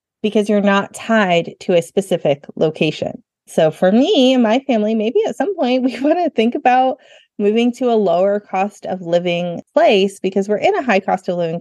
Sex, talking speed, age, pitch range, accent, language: female, 195 wpm, 30-49, 180-225 Hz, American, English